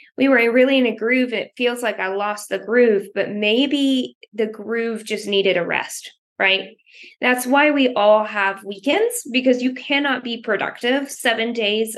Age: 20-39